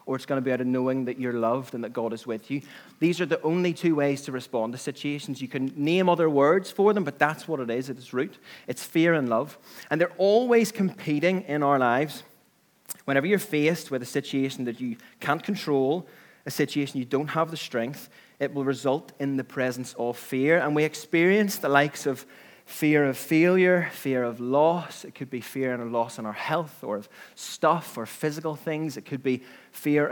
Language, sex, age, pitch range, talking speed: English, male, 30-49, 130-165 Hz, 215 wpm